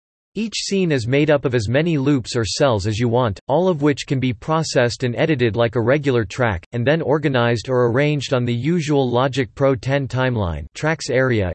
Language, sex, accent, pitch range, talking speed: English, male, American, 120-150 Hz, 210 wpm